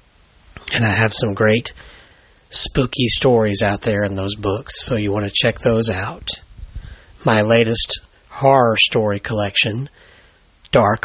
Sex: male